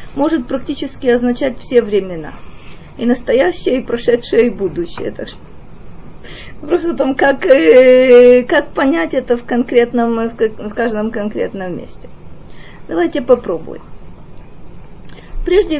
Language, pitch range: Russian, 235-290 Hz